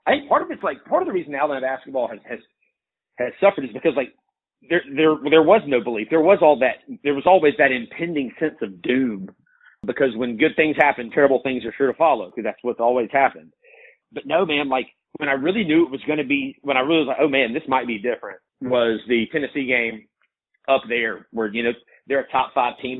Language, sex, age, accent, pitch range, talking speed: English, male, 40-59, American, 120-155 Hz, 235 wpm